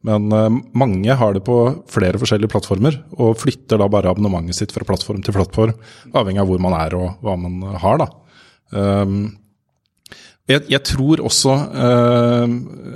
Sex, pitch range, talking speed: male, 95-115 Hz, 145 wpm